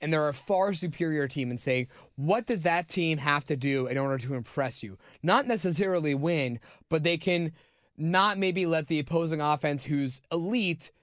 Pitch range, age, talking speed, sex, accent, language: 135-170 Hz, 20-39, 185 wpm, male, American, English